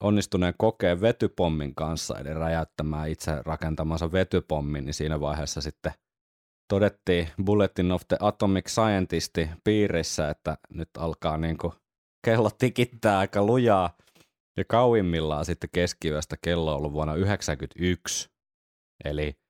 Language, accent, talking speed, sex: Finnish, native, 115 wpm, male